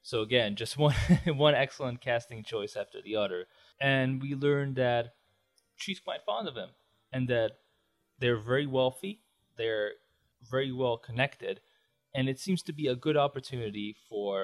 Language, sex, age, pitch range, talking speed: English, male, 20-39, 115-140 Hz, 160 wpm